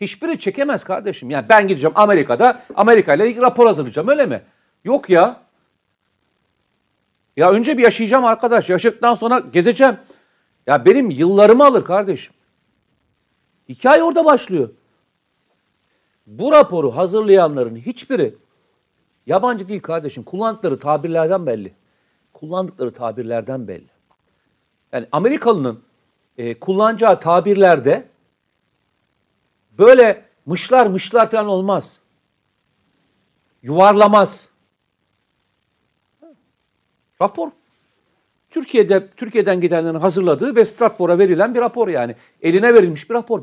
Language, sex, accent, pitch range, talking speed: Turkish, male, native, 170-245 Hz, 95 wpm